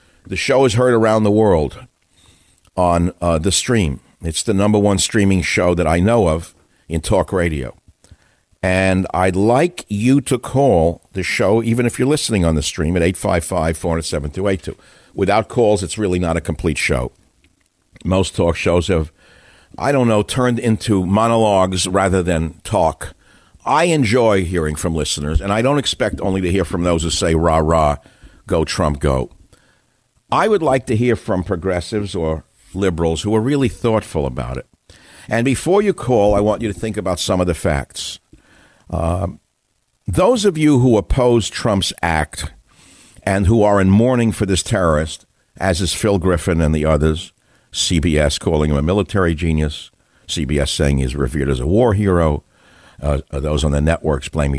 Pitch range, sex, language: 80-105 Hz, male, English